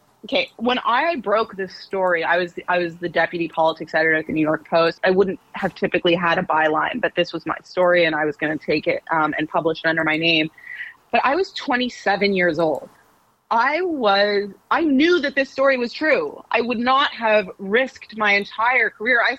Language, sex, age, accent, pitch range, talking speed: English, female, 30-49, American, 175-220 Hz, 215 wpm